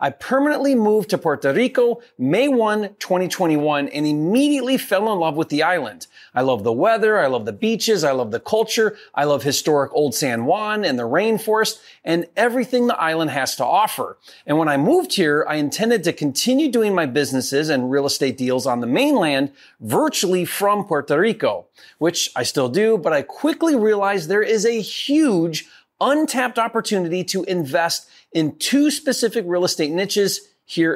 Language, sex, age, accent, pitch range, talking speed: English, male, 30-49, American, 160-240 Hz, 175 wpm